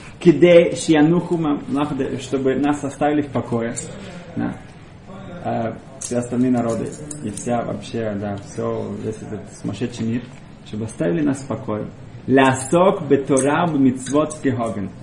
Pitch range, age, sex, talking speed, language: 115-155 Hz, 30-49, male, 95 wpm, Russian